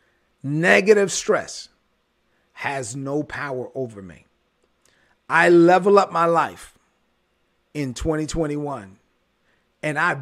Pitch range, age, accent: 145-175 Hz, 40-59, American